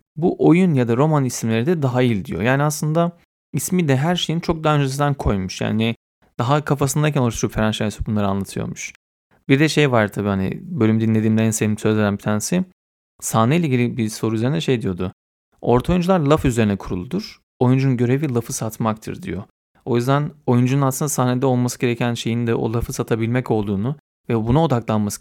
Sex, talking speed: male, 175 wpm